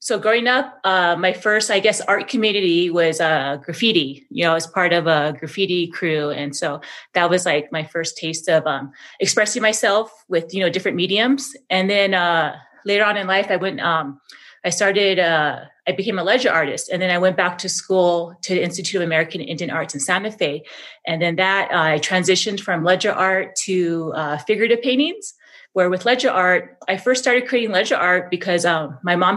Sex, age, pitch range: female, 30-49, 165-200 Hz